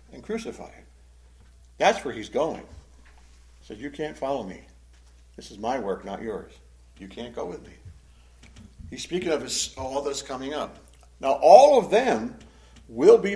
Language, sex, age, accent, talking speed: English, male, 60-79, American, 165 wpm